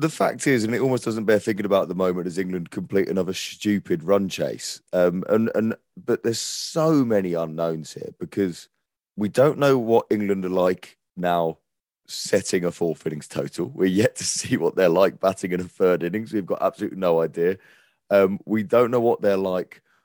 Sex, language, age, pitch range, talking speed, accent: male, English, 30-49, 90-110 Hz, 200 wpm, British